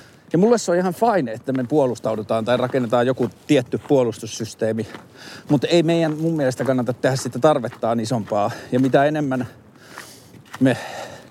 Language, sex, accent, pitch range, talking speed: Finnish, male, native, 115-140 Hz, 150 wpm